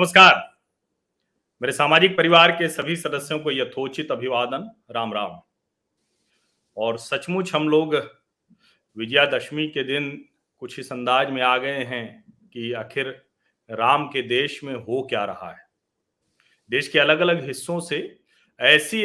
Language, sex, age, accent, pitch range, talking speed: Hindi, male, 40-59, native, 150-225 Hz, 135 wpm